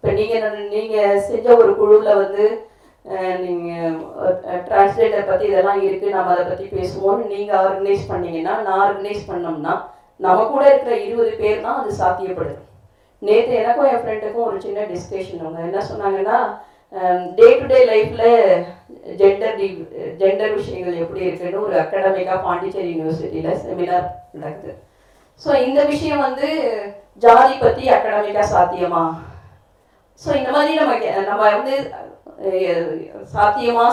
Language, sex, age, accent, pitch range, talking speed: Tamil, female, 30-49, native, 190-285 Hz, 125 wpm